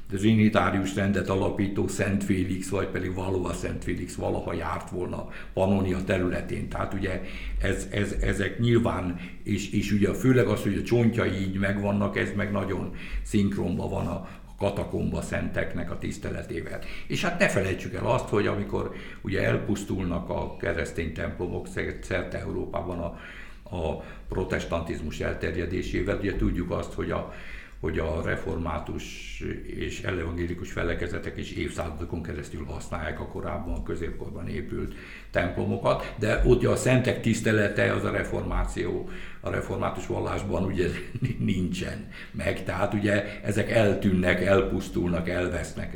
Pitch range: 85-100 Hz